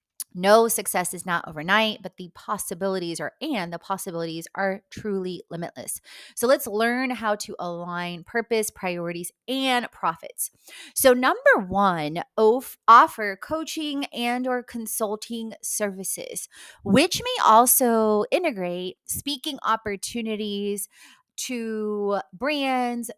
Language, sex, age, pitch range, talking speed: English, female, 30-49, 190-245 Hz, 110 wpm